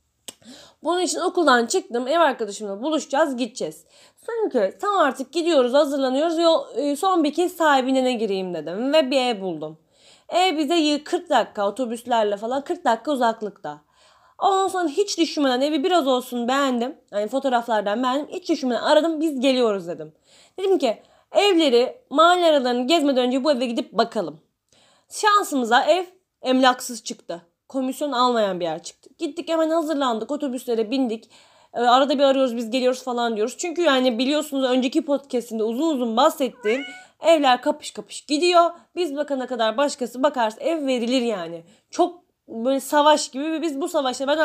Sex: female